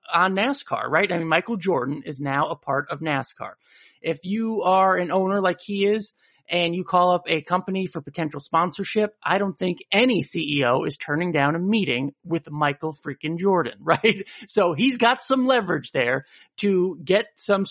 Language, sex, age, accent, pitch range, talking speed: English, male, 30-49, American, 150-200 Hz, 185 wpm